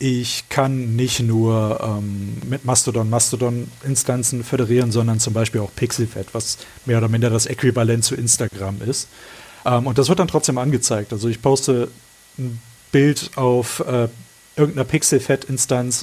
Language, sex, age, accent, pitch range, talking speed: German, male, 30-49, German, 115-135 Hz, 155 wpm